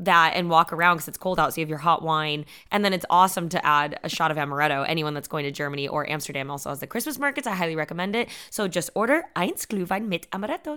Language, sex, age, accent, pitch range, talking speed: English, female, 20-39, American, 150-200 Hz, 260 wpm